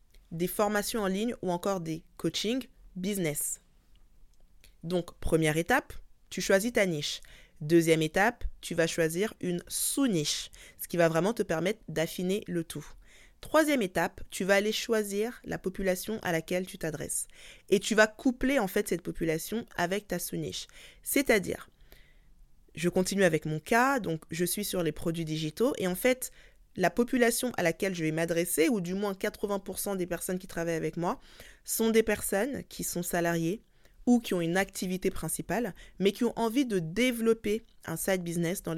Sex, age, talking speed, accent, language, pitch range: female, 20-39, 170 wpm, French, French, 175-225 Hz